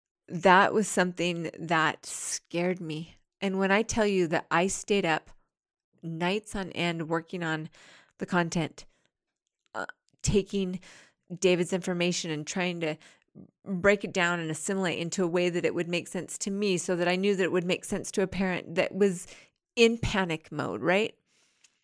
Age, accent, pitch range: 30-49, American, 165-200 Hz